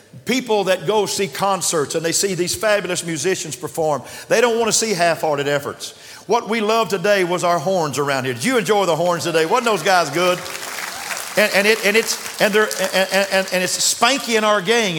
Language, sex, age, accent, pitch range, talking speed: English, male, 50-69, American, 160-230 Hz, 210 wpm